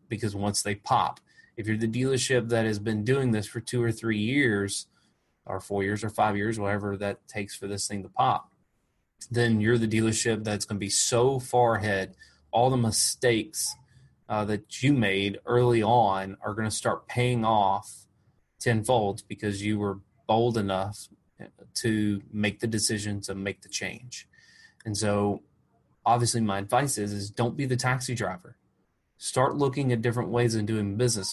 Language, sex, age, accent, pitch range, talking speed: English, male, 20-39, American, 100-120 Hz, 175 wpm